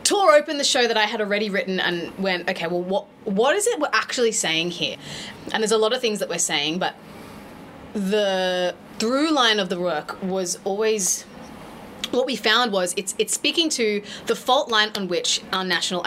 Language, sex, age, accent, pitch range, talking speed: English, female, 20-39, Australian, 185-230 Hz, 200 wpm